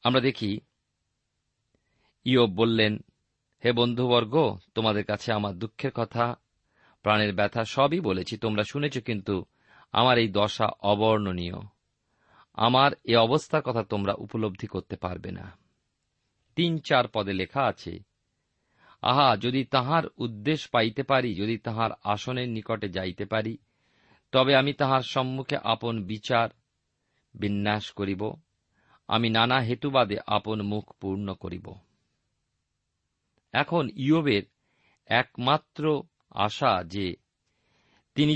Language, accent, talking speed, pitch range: Bengali, native, 110 wpm, 105-135 Hz